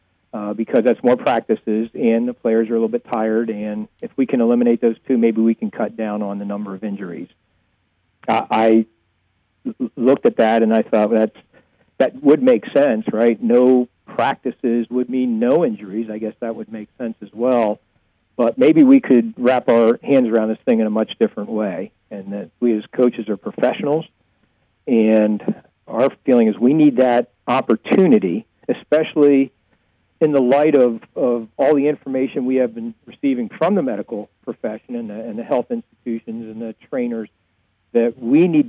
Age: 50-69